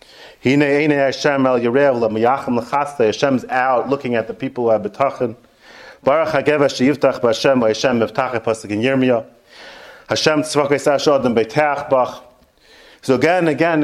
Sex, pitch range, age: male, 120-150 Hz, 40-59